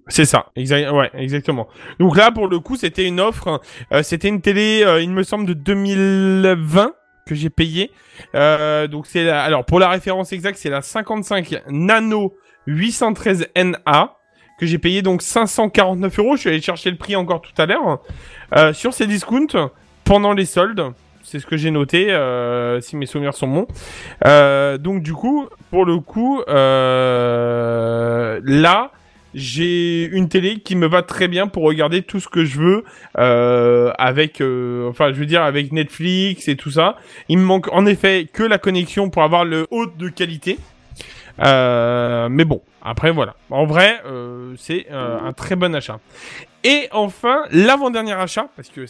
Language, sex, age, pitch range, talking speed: French, male, 20-39, 140-195 Hz, 175 wpm